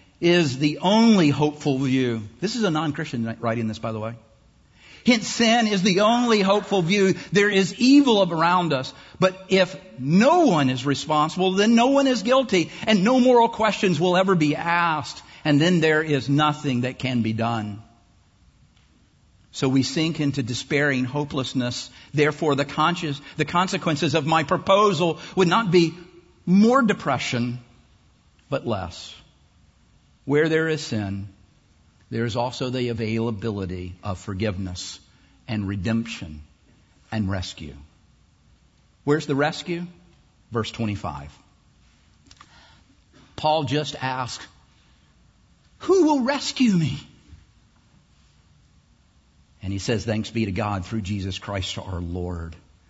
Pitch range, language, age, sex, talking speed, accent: 105-175 Hz, English, 50-69, male, 130 wpm, American